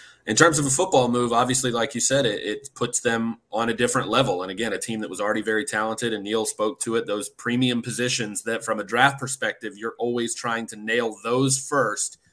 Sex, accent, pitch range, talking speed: male, American, 110-130 Hz, 230 wpm